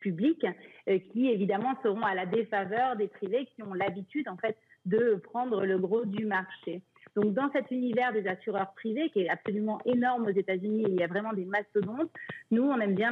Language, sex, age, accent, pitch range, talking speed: French, female, 40-59, French, 205-250 Hz, 210 wpm